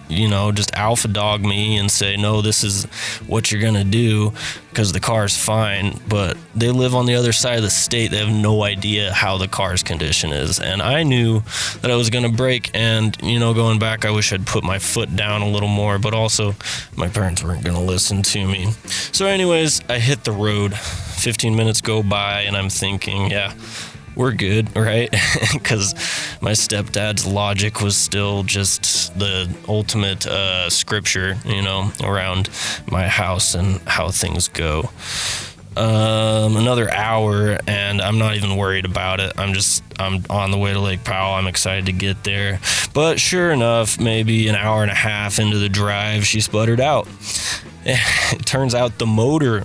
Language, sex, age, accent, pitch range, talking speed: English, male, 20-39, American, 100-115 Hz, 185 wpm